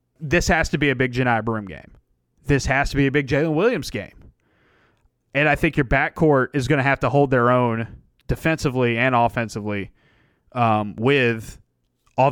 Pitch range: 120-145 Hz